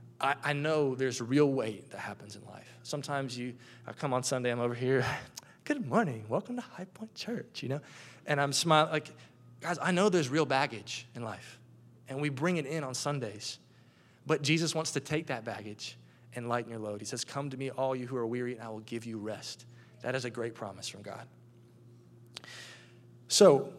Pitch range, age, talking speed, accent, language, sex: 115-140 Hz, 20-39, 205 wpm, American, English, male